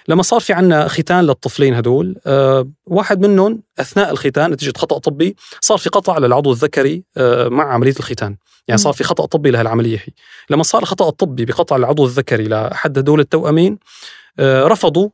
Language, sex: Arabic, male